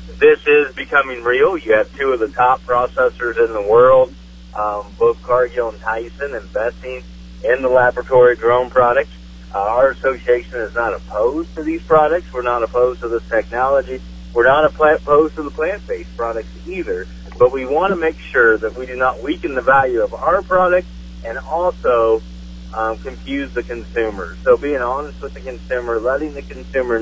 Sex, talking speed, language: male, 175 wpm, English